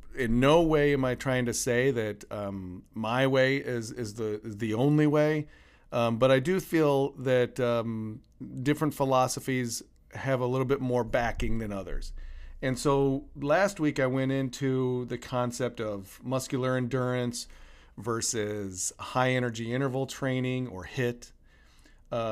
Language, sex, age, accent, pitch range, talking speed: English, male, 40-59, American, 115-130 Hz, 150 wpm